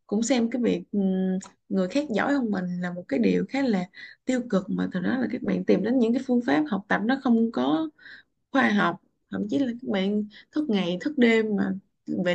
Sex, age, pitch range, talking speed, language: female, 20-39, 185-255 Hz, 230 wpm, Vietnamese